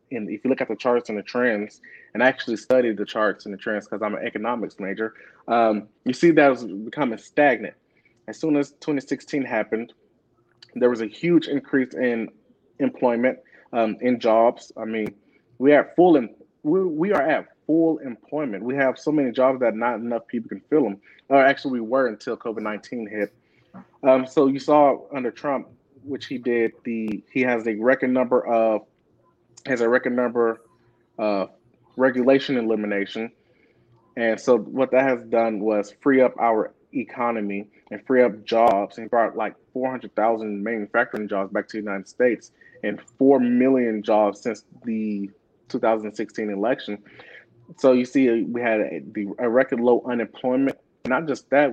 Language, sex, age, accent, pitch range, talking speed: English, male, 20-39, American, 110-130 Hz, 170 wpm